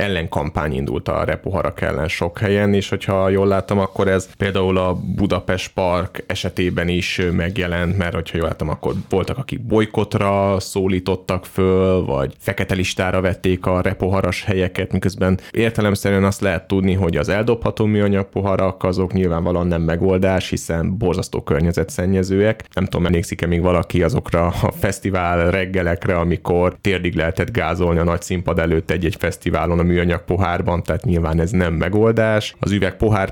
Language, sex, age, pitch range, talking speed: Hungarian, male, 30-49, 85-100 Hz, 150 wpm